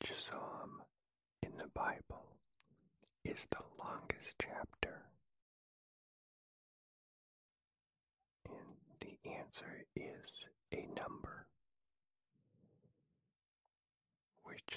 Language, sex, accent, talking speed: English, male, American, 65 wpm